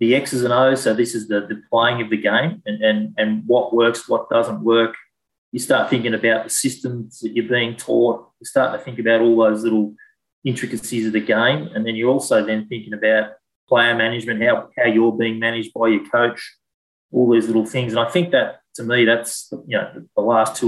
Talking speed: 220 wpm